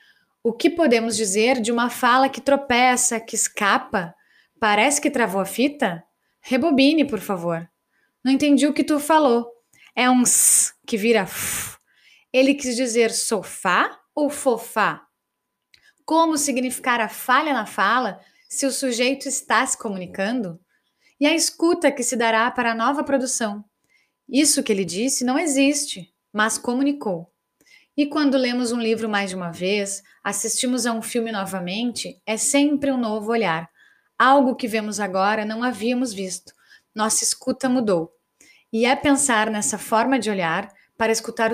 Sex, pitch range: female, 215-265 Hz